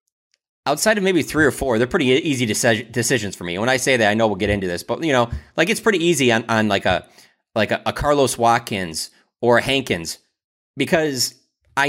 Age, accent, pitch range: 20-39, American, 110-140 Hz